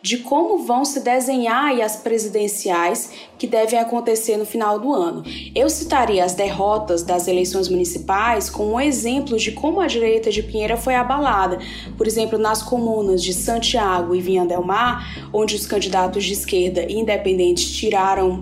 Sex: female